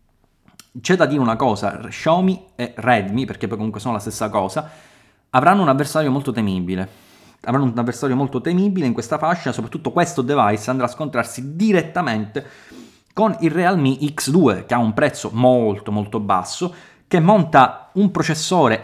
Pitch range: 115-165 Hz